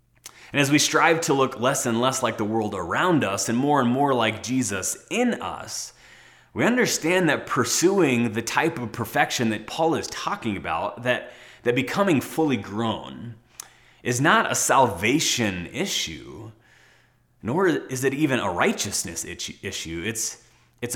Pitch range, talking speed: 105-140 Hz, 155 wpm